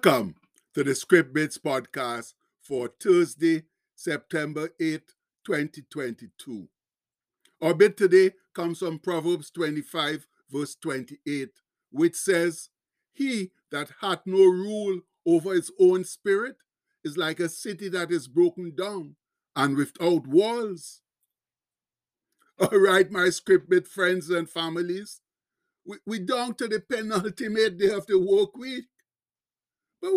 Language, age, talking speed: English, 60-79, 115 wpm